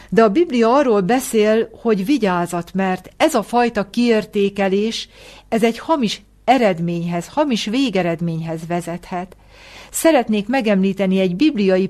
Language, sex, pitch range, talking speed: Hungarian, female, 175-230 Hz, 115 wpm